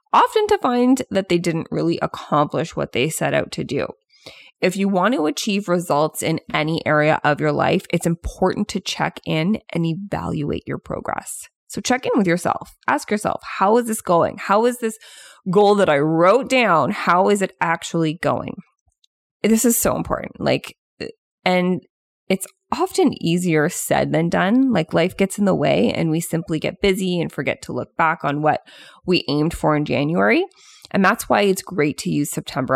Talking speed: 185 wpm